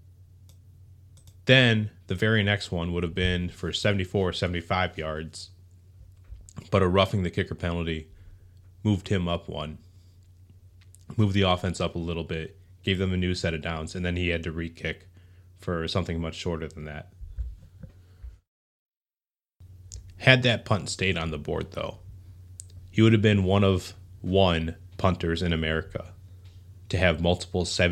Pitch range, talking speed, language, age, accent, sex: 90-95 Hz, 150 wpm, English, 30-49, American, male